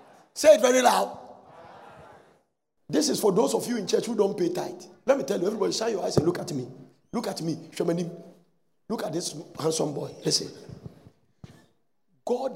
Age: 50-69